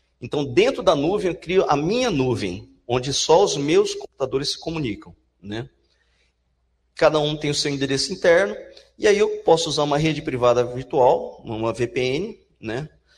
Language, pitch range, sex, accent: Portuguese, 120-170 Hz, male, Brazilian